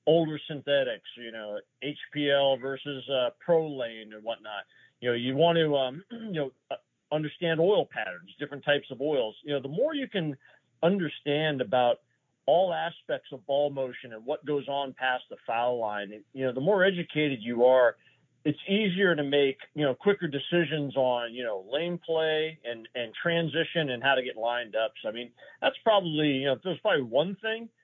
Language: English